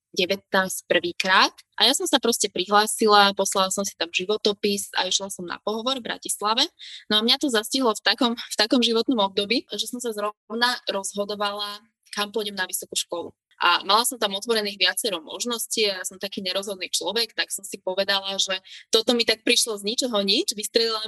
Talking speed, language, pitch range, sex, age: 190 wpm, Slovak, 185-225 Hz, female, 20-39